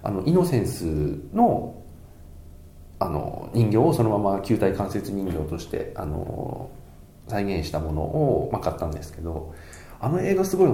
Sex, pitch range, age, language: male, 80-120 Hz, 40-59, Japanese